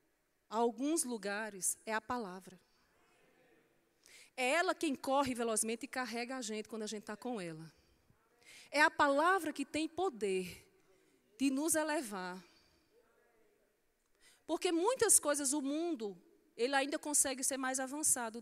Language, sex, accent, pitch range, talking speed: Portuguese, female, Brazilian, 245-345 Hz, 130 wpm